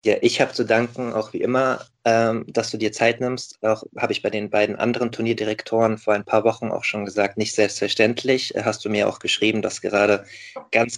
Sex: male